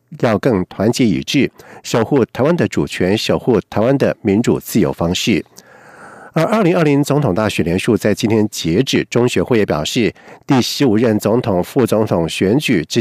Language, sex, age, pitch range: German, male, 50-69, 105-140 Hz